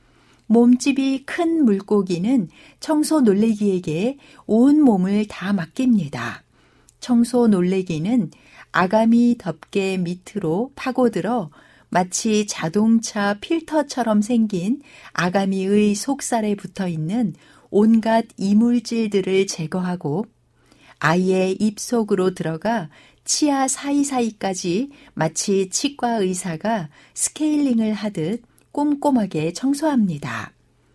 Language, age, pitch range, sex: Korean, 60-79, 180-240 Hz, female